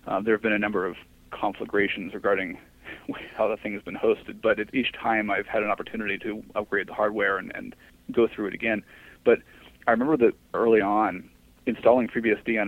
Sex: male